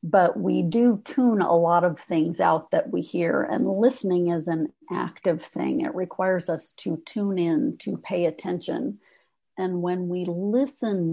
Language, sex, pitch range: English, female, 165-200 Hz